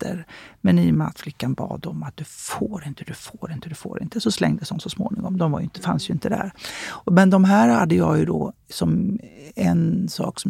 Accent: native